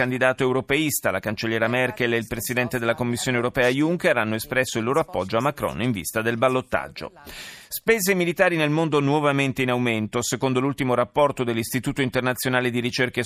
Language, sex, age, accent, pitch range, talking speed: Italian, male, 30-49, native, 115-150 Hz, 170 wpm